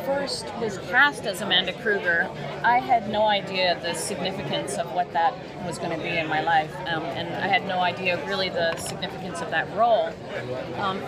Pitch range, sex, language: 180-220 Hz, female, English